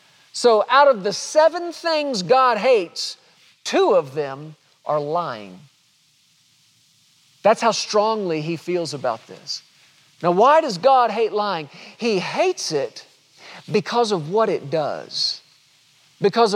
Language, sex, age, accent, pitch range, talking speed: English, male, 40-59, American, 155-240 Hz, 125 wpm